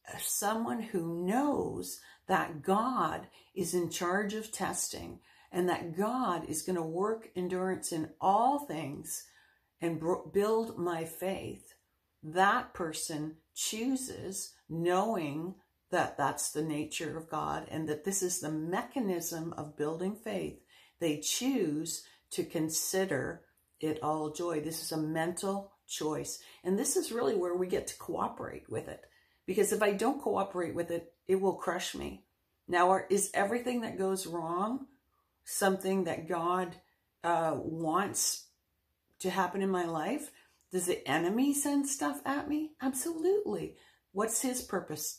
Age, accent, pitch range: 60-79, American, 165-210 Hz